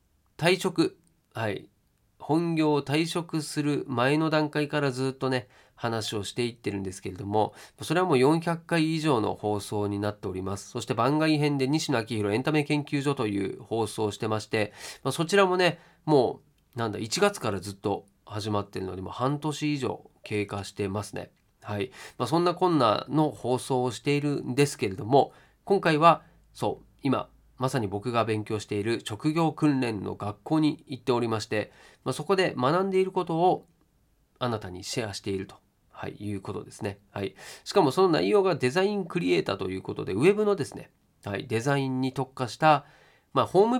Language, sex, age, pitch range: Japanese, male, 40-59, 105-155 Hz